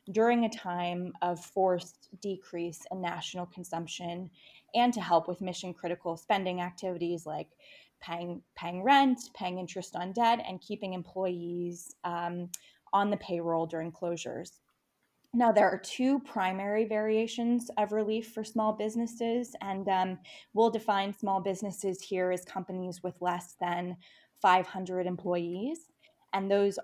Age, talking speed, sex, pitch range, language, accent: 20-39, 135 wpm, female, 175-205 Hz, English, American